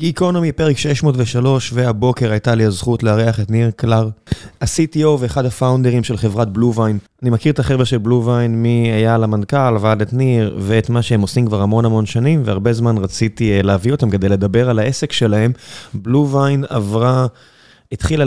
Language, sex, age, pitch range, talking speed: Hebrew, male, 20-39, 105-125 Hz, 165 wpm